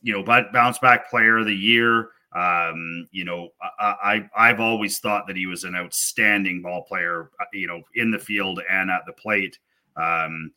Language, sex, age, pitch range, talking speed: English, male, 30-49, 95-115 Hz, 195 wpm